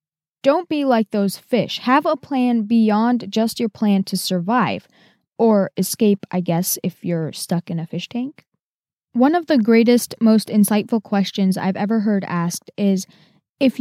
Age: 10-29